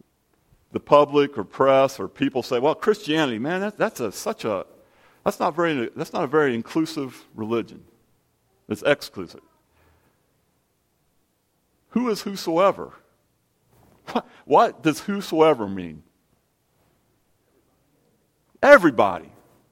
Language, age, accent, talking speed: English, 50-69, American, 105 wpm